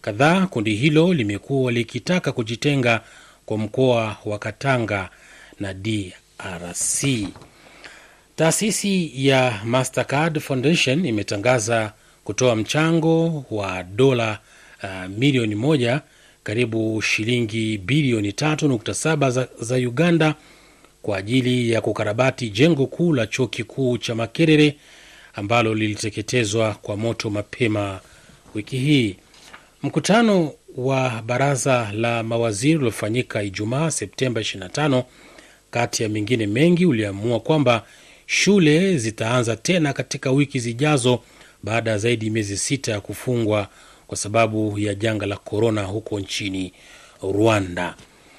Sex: male